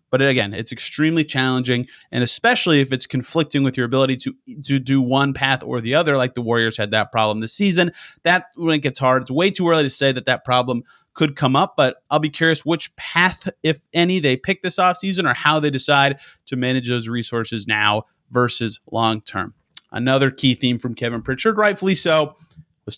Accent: American